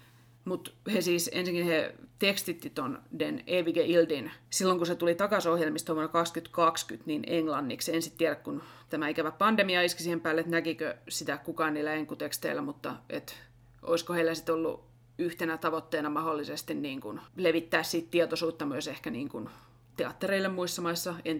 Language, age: Finnish, 30-49